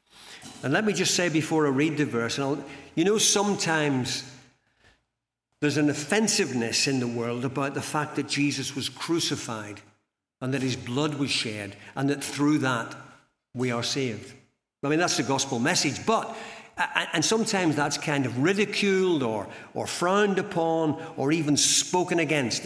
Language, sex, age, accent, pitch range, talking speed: English, male, 50-69, British, 130-160 Hz, 165 wpm